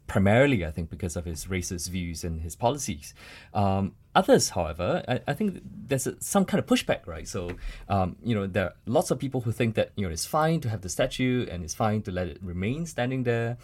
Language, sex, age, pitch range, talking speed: English, male, 20-39, 90-120 Hz, 230 wpm